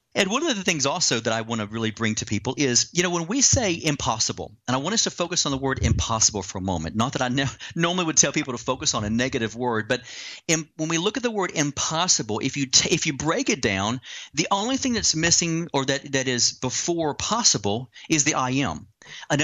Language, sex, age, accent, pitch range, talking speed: English, male, 40-59, American, 125-165 Hz, 250 wpm